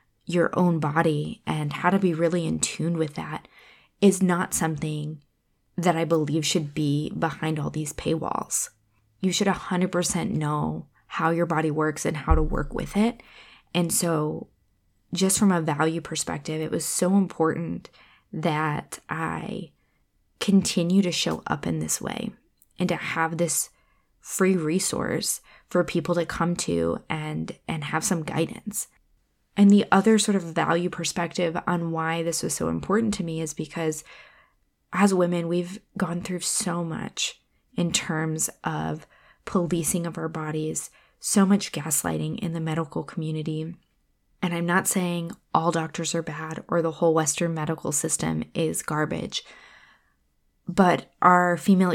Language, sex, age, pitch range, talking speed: English, female, 20-39, 155-180 Hz, 155 wpm